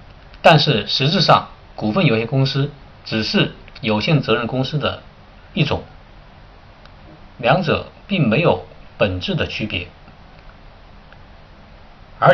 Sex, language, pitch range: male, Chinese, 95-145 Hz